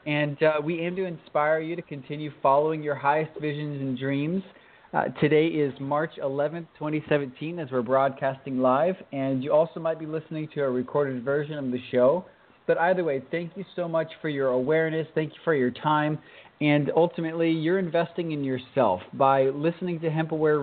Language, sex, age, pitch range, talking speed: English, male, 30-49, 135-160 Hz, 185 wpm